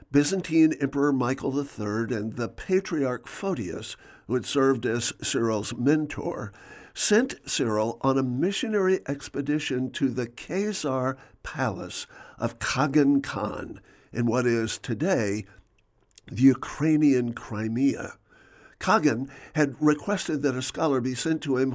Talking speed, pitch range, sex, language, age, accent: 120 wpm, 120-155 Hz, male, English, 60-79, American